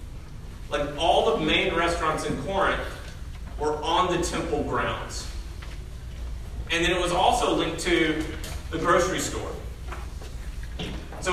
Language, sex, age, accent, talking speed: English, male, 40-59, American, 120 wpm